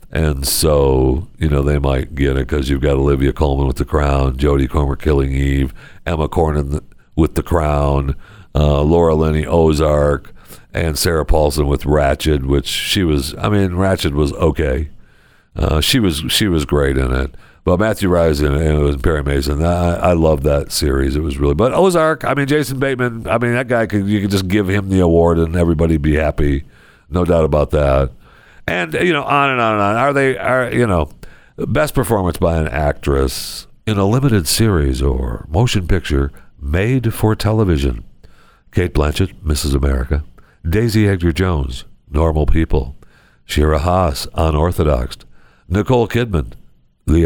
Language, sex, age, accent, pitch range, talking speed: English, male, 60-79, American, 70-90 Hz, 170 wpm